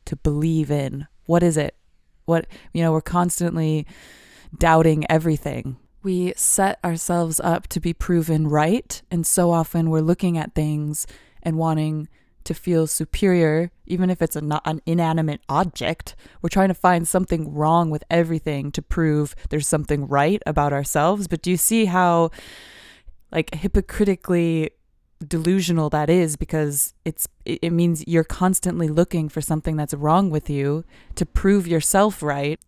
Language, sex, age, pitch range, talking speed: English, female, 20-39, 150-170 Hz, 150 wpm